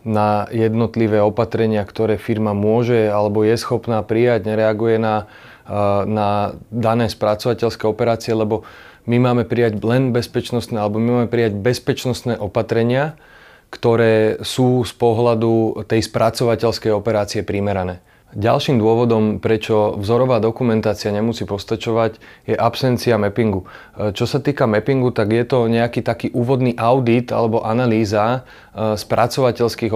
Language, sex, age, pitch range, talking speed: Slovak, male, 30-49, 110-120 Hz, 120 wpm